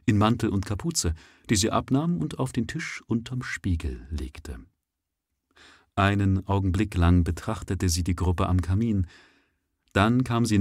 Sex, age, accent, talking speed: male, 40-59, German, 140 wpm